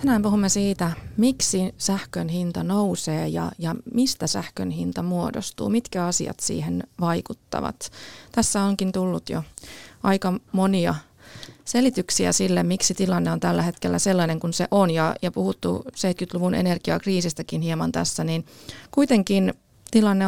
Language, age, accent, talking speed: Finnish, 20-39, native, 130 wpm